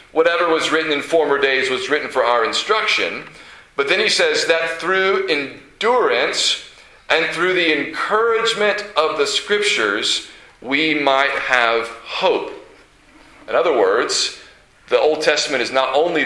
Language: English